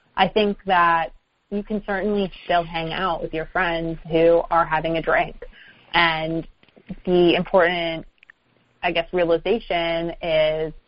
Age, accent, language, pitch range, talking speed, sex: 20-39, American, English, 160-185 Hz, 130 wpm, female